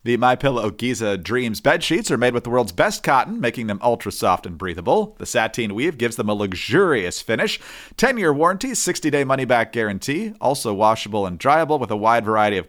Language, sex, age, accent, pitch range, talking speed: English, male, 40-59, American, 110-165 Hz, 190 wpm